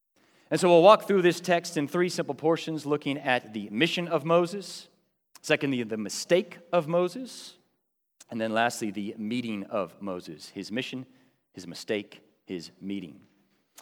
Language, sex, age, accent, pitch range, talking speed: English, male, 40-59, American, 120-170 Hz, 150 wpm